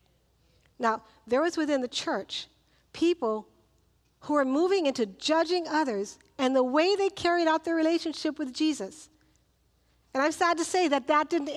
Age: 50-69